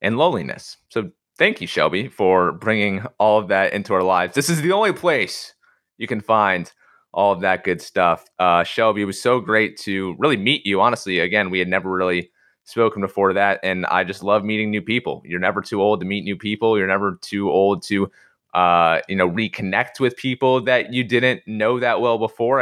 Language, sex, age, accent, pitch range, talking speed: English, male, 30-49, American, 95-120 Hz, 210 wpm